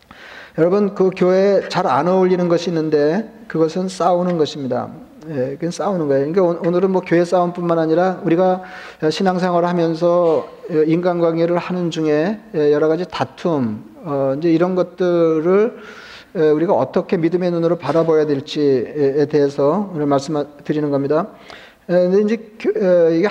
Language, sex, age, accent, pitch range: Korean, male, 40-59, native, 160-190 Hz